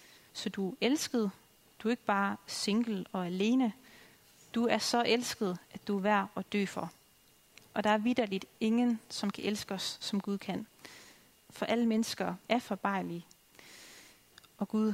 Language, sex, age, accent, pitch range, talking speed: Danish, female, 30-49, native, 200-225 Hz, 165 wpm